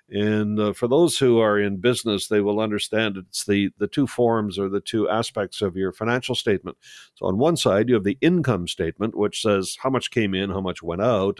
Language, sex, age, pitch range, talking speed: English, male, 50-69, 100-115 Hz, 225 wpm